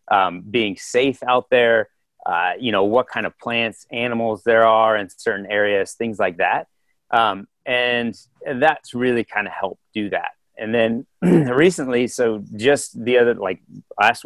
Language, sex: English, male